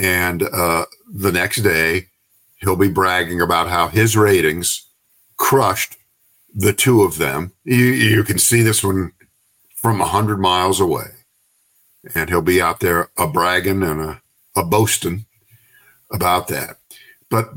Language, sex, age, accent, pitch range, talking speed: English, male, 50-69, American, 95-115 Hz, 145 wpm